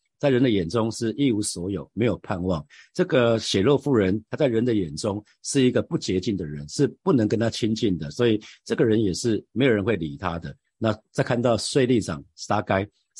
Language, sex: Chinese, male